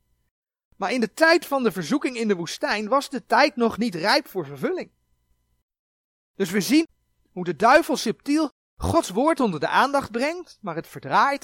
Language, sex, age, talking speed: Dutch, male, 40-59, 180 wpm